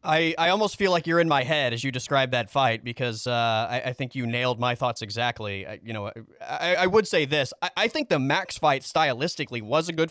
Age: 30-49